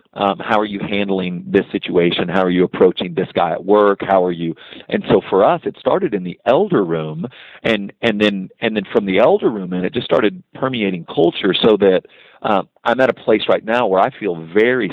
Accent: American